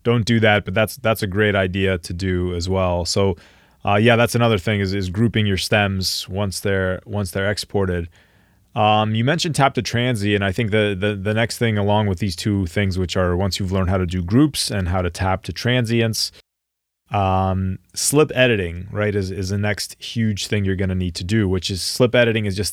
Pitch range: 95-120 Hz